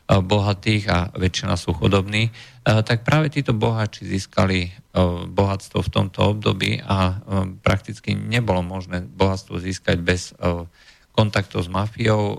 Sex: male